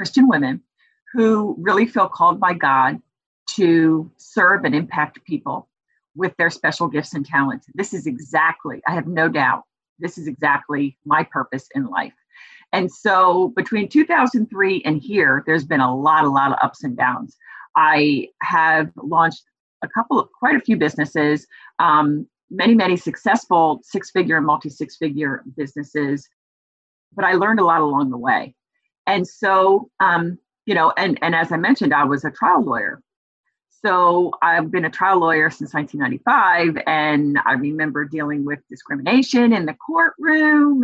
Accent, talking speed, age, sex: American, 155 wpm, 40-59, female